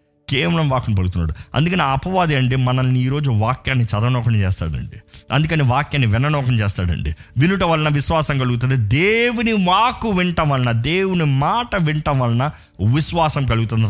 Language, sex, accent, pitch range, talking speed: Telugu, male, native, 110-165 Hz, 120 wpm